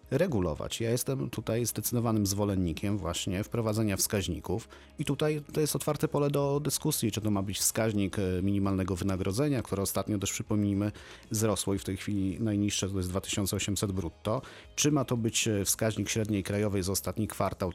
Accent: native